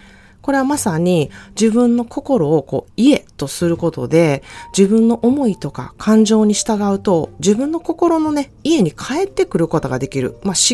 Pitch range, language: 150-230 Hz, Japanese